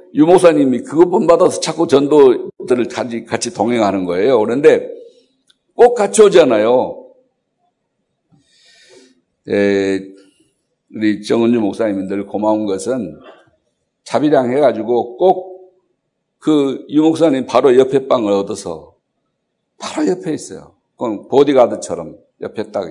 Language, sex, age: Korean, male, 60-79